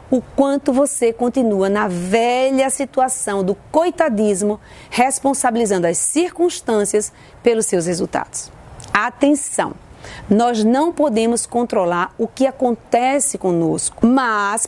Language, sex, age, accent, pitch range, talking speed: Portuguese, female, 40-59, Brazilian, 205-275 Hz, 100 wpm